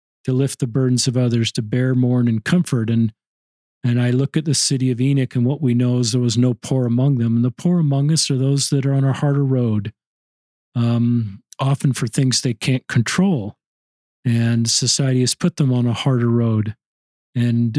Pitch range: 120-140 Hz